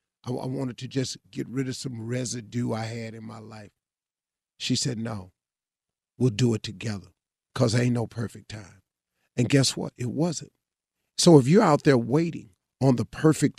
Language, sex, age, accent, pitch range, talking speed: English, male, 40-59, American, 130-185 Hz, 175 wpm